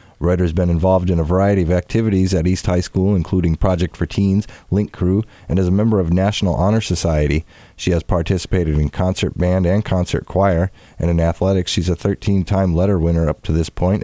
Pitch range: 85-100 Hz